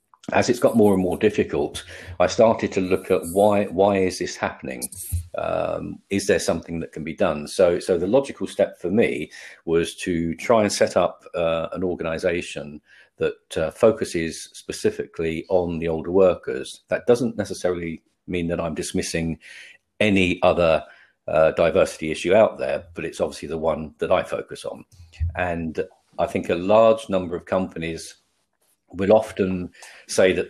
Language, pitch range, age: English, 80-95 Hz, 50-69